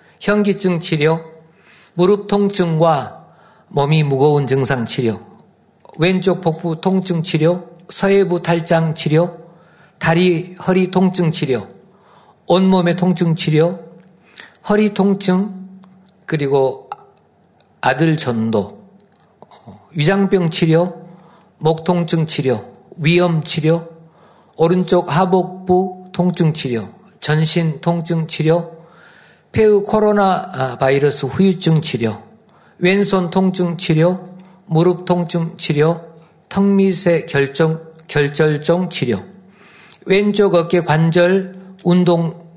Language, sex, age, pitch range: Korean, male, 50-69, 155-185 Hz